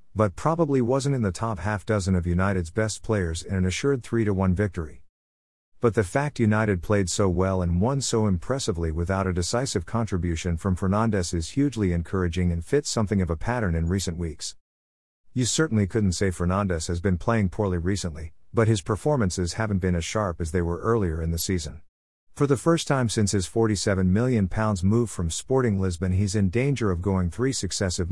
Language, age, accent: English, 50-69, American